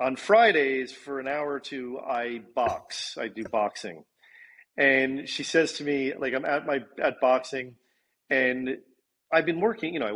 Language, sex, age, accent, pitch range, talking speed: English, male, 40-59, American, 135-165 Hz, 175 wpm